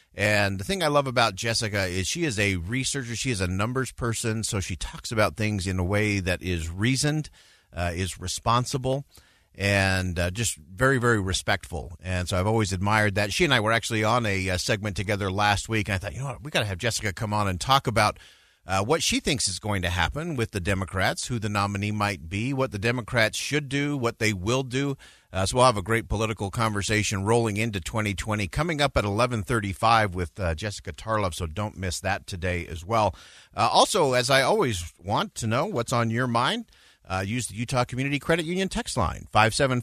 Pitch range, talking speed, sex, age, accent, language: 100-130 Hz, 220 wpm, male, 40-59, American, English